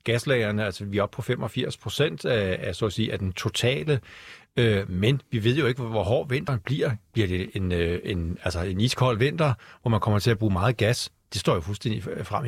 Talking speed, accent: 220 wpm, native